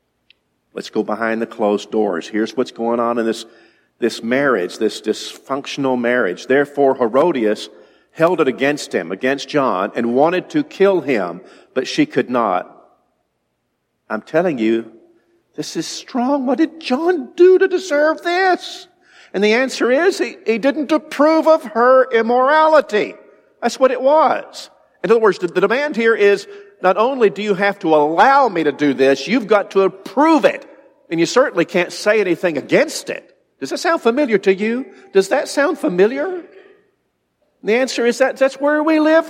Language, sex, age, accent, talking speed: English, male, 50-69, American, 170 wpm